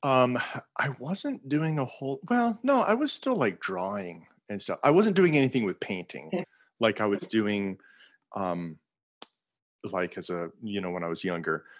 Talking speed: 180 wpm